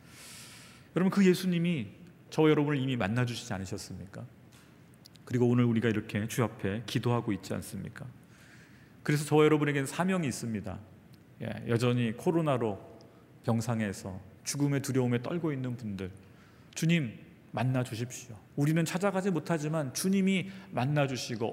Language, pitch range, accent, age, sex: Korean, 115-155 Hz, native, 40-59, male